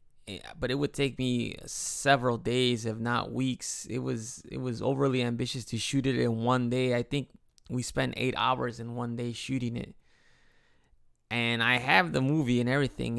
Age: 20-39